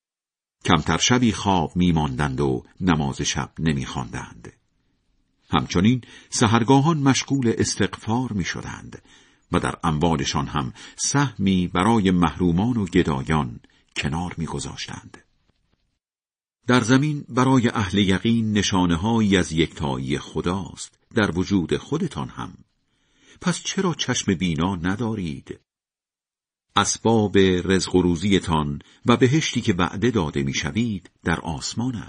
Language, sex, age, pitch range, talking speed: Persian, male, 50-69, 80-115 Hz, 100 wpm